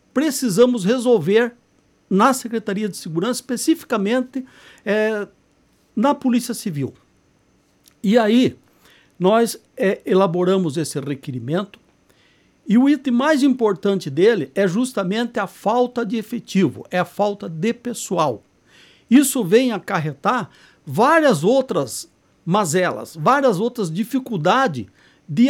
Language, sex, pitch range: Portuguese, male, 190-245 Hz